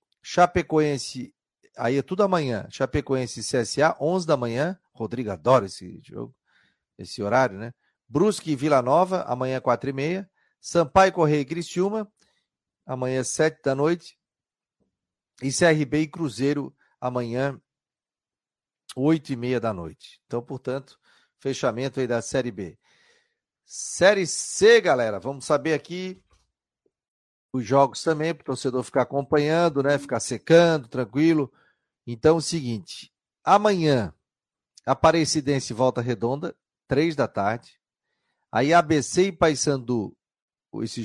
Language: Portuguese